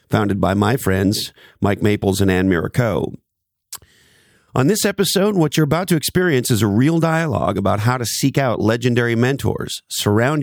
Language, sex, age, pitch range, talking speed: English, male, 40-59, 100-135 Hz, 165 wpm